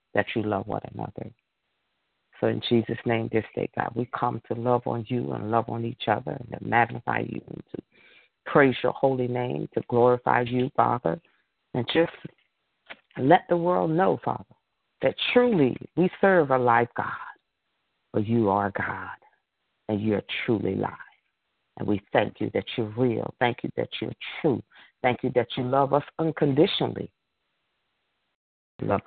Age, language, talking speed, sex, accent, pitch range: 50-69, English, 165 wpm, female, American, 110-135 Hz